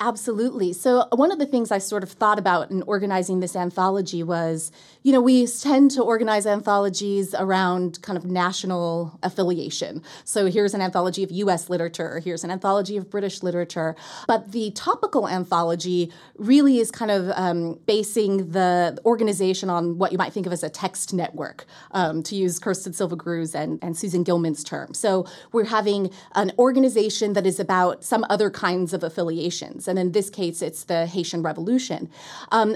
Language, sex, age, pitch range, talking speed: English, female, 30-49, 175-205 Hz, 175 wpm